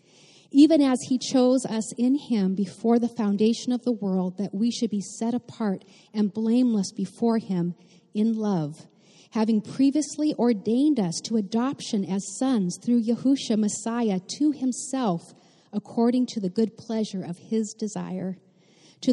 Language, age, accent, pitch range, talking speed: English, 40-59, American, 190-245 Hz, 145 wpm